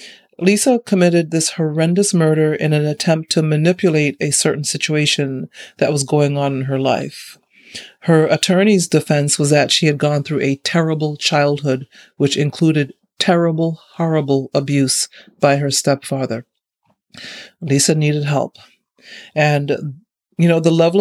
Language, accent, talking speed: English, American, 135 wpm